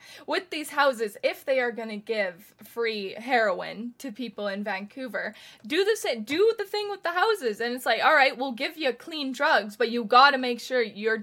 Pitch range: 210-275 Hz